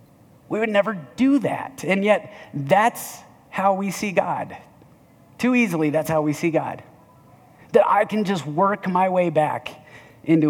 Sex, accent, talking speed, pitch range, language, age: male, American, 160 wpm, 135-180 Hz, English, 30-49